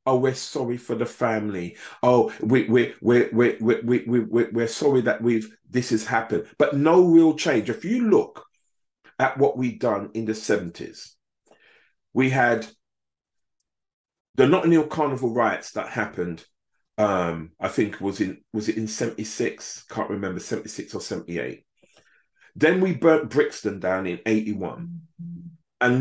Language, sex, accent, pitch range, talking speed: English, male, British, 110-155 Hz, 150 wpm